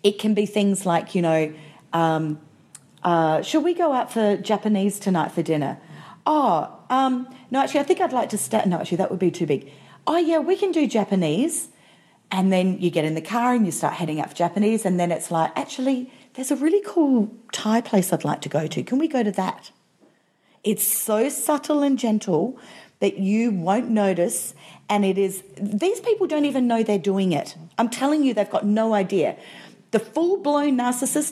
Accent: Australian